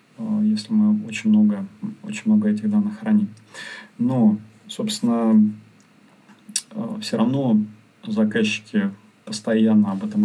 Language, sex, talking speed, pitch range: Russian, male, 100 wpm, 200-220 Hz